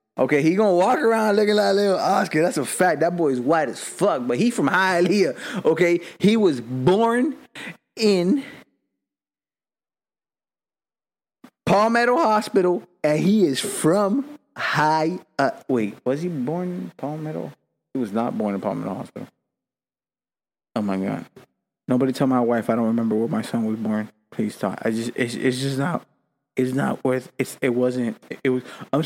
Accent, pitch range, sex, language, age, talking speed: American, 130-190 Hz, male, English, 20-39, 170 wpm